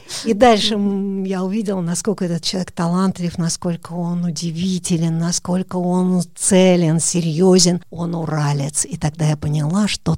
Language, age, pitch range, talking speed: Russian, 50-69, 170-205 Hz, 130 wpm